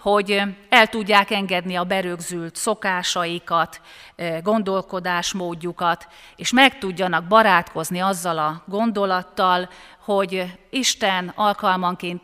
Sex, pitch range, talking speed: female, 165-200 Hz, 90 wpm